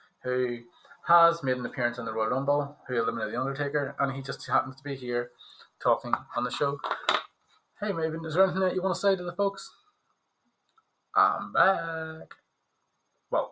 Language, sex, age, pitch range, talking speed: English, male, 20-39, 120-165 Hz, 180 wpm